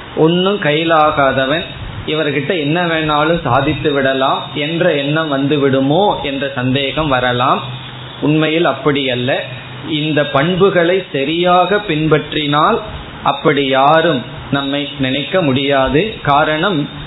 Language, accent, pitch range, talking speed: Tamil, native, 135-165 Hz, 90 wpm